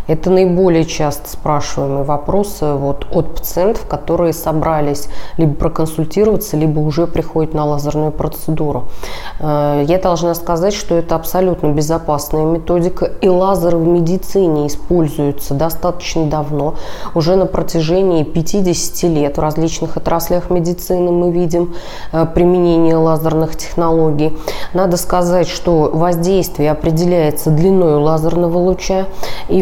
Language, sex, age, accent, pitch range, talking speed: Russian, female, 20-39, native, 160-185 Hz, 115 wpm